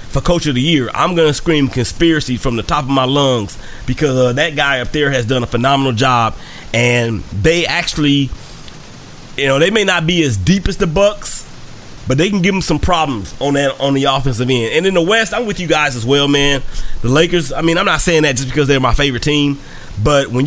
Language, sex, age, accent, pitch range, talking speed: English, male, 30-49, American, 125-160 Hz, 230 wpm